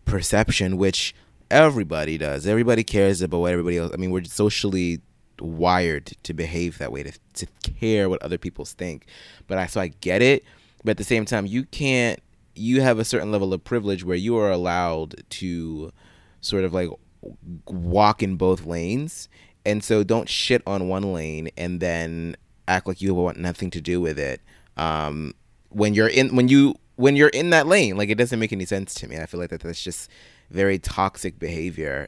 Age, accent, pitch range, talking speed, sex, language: 20-39, American, 85-110 Hz, 195 wpm, male, English